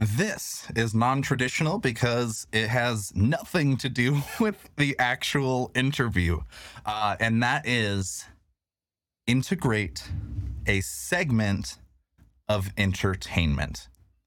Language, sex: English, male